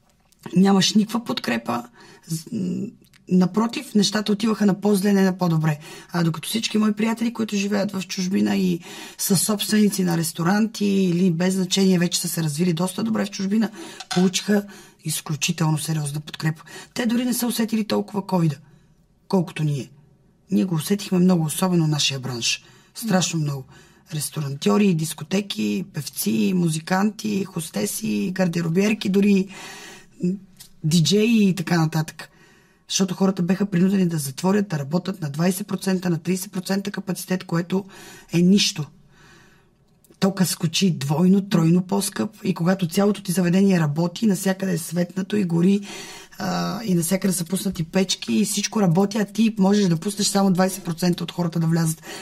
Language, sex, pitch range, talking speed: Bulgarian, female, 170-195 Hz, 140 wpm